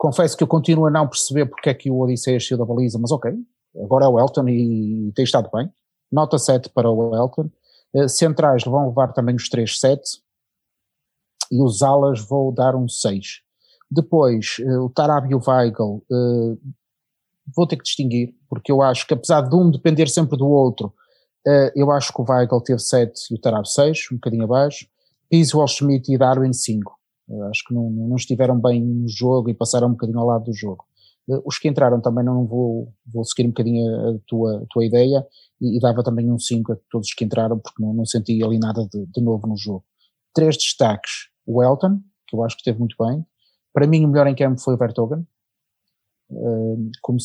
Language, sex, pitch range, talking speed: Portuguese, male, 115-140 Hz, 205 wpm